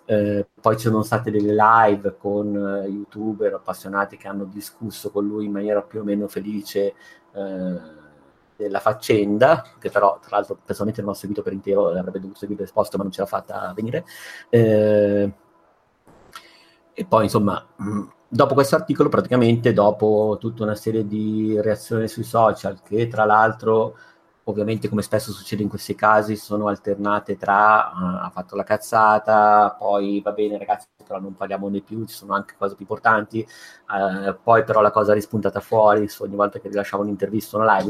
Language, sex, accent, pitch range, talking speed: Italian, male, native, 100-110 Hz, 175 wpm